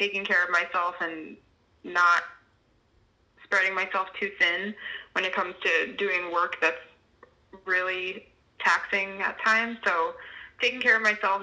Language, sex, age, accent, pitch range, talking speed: English, female, 20-39, American, 170-195 Hz, 135 wpm